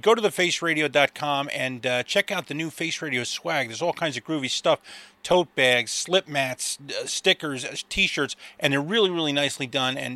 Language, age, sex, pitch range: English, 30-49, male, 130-175 Hz